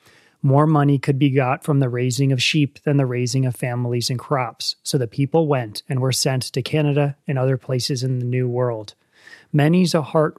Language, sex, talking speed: English, male, 210 wpm